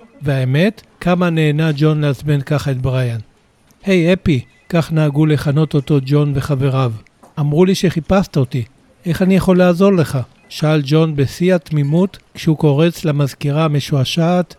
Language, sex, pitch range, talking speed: Hebrew, male, 145-170 Hz, 135 wpm